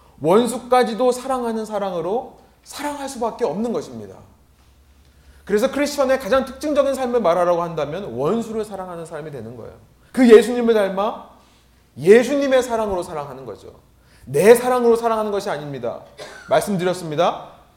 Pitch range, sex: 155-240 Hz, male